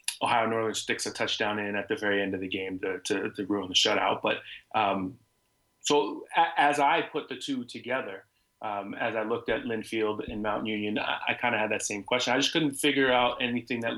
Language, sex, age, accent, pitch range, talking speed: English, male, 30-49, American, 110-130 Hz, 230 wpm